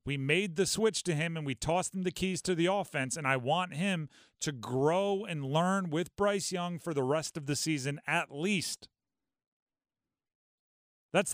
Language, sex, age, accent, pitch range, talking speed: English, male, 40-59, American, 170-210 Hz, 185 wpm